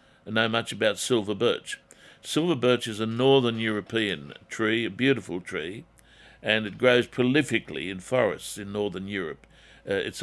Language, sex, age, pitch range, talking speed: English, male, 60-79, 105-125 Hz, 155 wpm